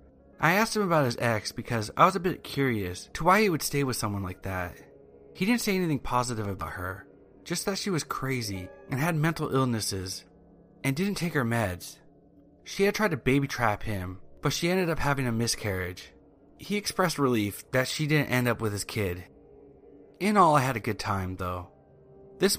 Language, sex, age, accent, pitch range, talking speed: English, male, 30-49, American, 95-145 Hz, 200 wpm